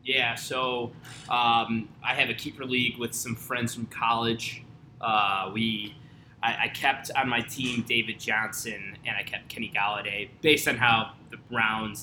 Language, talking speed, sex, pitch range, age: English, 165 wpm, male, 110-135 Hz, 20-39